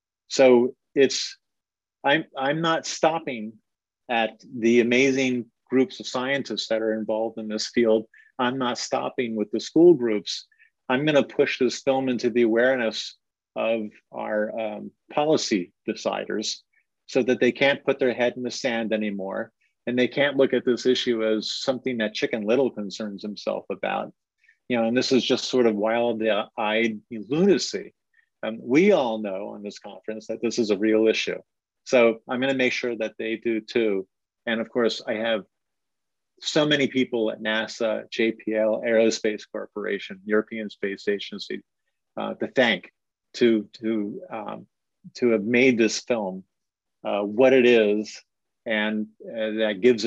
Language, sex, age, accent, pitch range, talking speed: English, male, 40-59, American, 110-125 Hz, 155 wpm